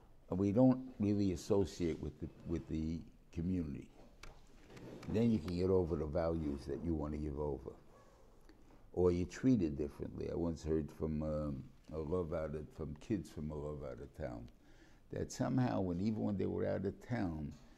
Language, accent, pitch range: English, American, 80-100 Hz